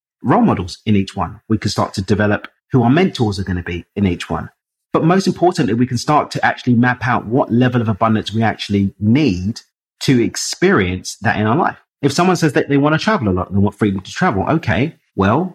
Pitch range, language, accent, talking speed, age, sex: 100-130 Hz, English, British, 230 wpm, 30-49, male